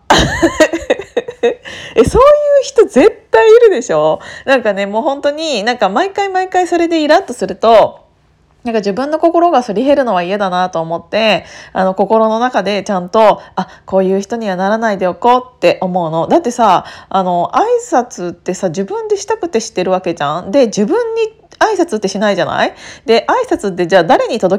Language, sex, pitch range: Japanese, female, 190-315 Hz